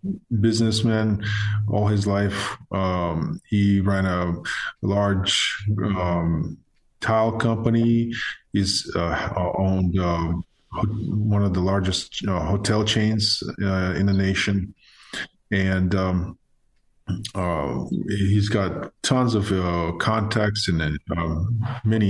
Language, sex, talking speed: English, male, 110 wpm